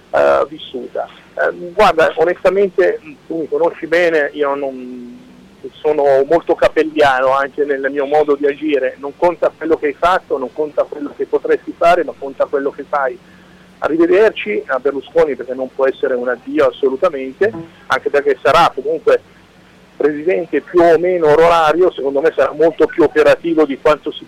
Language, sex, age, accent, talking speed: Italian, male, 40-59, native, 160 wpm